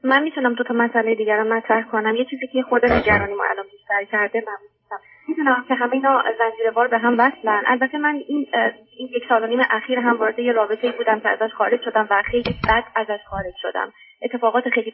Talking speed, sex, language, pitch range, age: 205 wpm, female, Persian, 220-260 Hz, 20-39